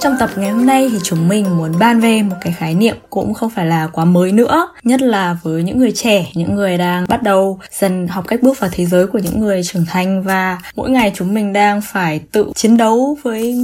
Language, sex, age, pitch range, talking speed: Vietnamese, female, 10-29, 180-240 Hz, 245 wpm